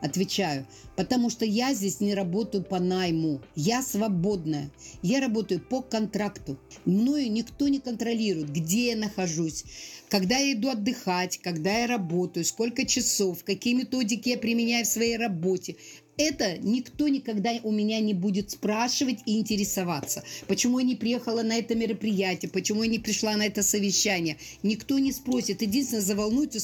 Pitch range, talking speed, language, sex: 185-245 Hz, 150 wpm, Russian, female